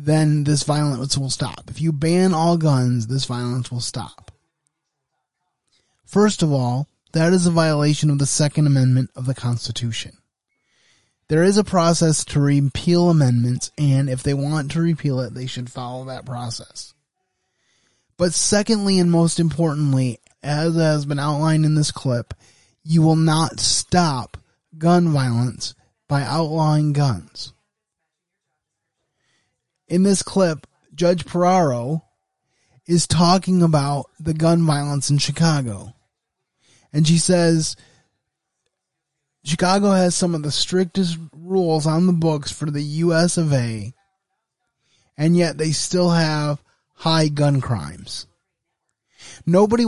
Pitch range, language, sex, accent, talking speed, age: 135-170 Hz, English, male, American, 130 wpm, 20-39